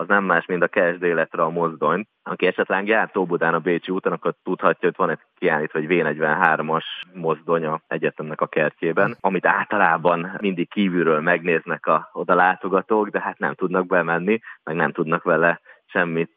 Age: 30-49